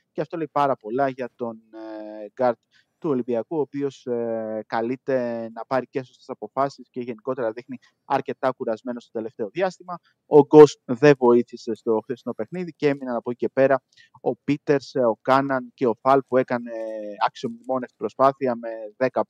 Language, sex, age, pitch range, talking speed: Greek, male, 20-39, 115-135 Hz, 165 wpm